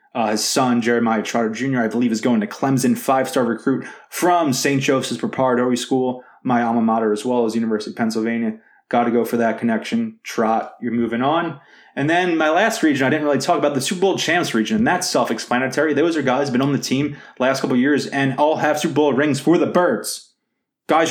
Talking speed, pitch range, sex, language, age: 225 wpm, 120-145 Hz, male, English, 20-39